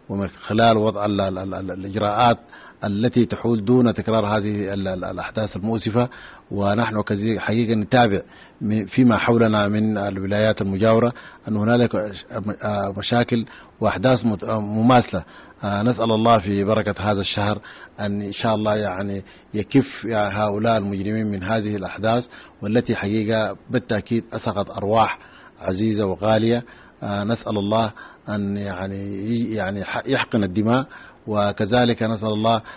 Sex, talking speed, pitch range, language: male, 110 wpm, 100-115 Hz, English